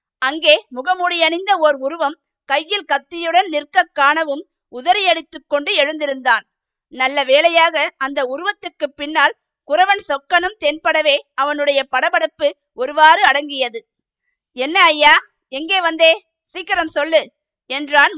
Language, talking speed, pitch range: Tamil, 100 wpm, 290-335 Hz